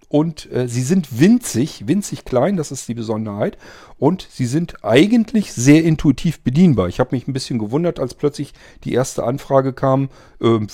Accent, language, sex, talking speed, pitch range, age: German, German, male, 175 wpm, 105-140 Hz, 40-59